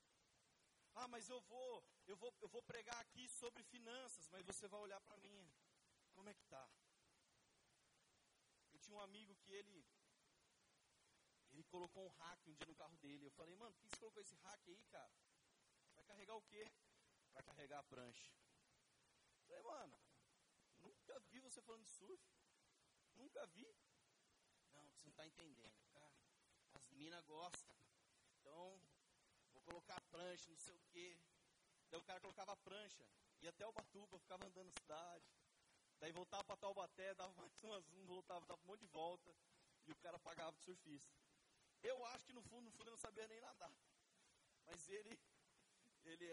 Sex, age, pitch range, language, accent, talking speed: male, 30-49, 170-235 Hz, Portuguese, Brazilian, 170 wpm